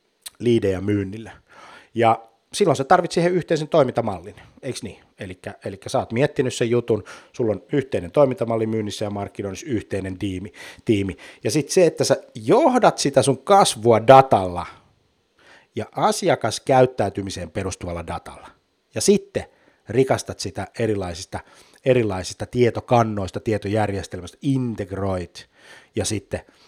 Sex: male